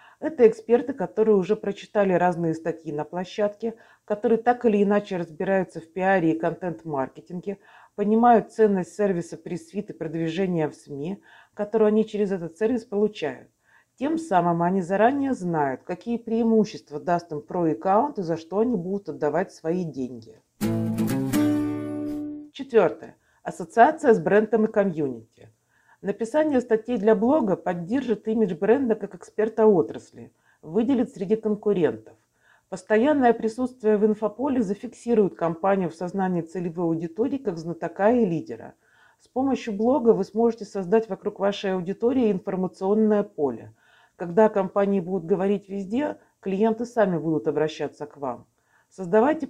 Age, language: 50-69, Russian